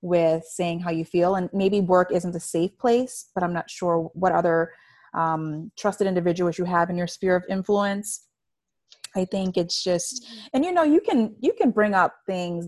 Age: 30-49